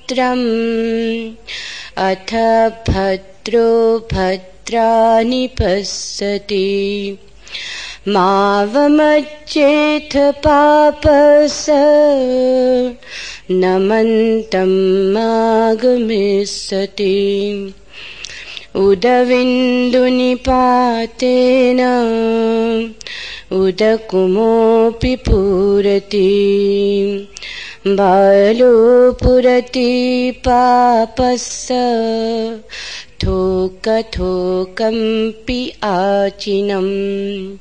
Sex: female